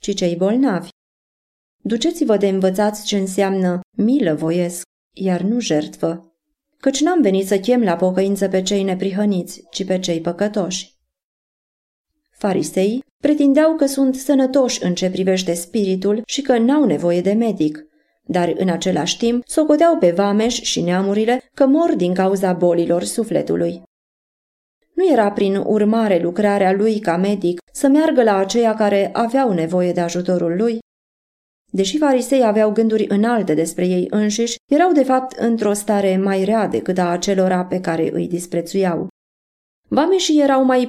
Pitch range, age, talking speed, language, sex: 180-240 Hz, 30-49, 145 wpm, Romanian, female